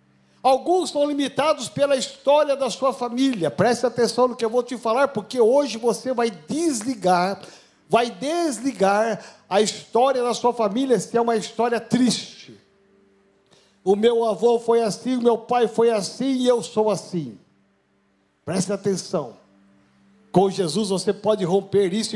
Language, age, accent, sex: Portuguese, 60-79, Brazilian, male